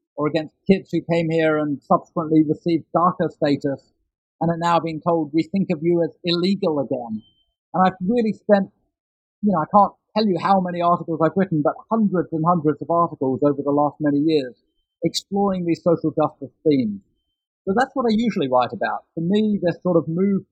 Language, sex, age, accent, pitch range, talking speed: English, male, 50-69, British, 155-195 Hz, 195 wpm